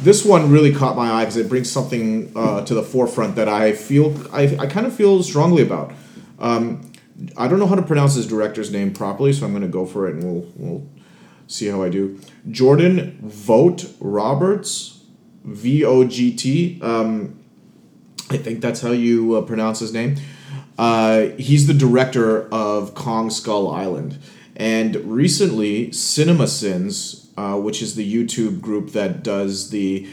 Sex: male